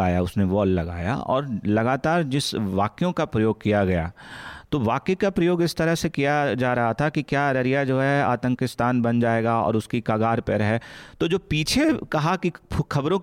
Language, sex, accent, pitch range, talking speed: Hindi, male, native, 115-165 Hz, 190 wpm